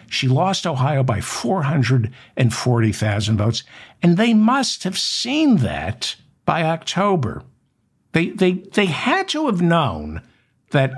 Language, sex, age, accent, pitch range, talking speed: English, male, 60-79, American, 125-165 Hz, 120 wpm